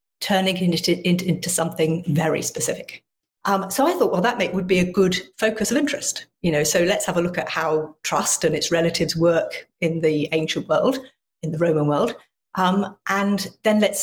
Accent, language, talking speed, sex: British, English, 195 wpm, female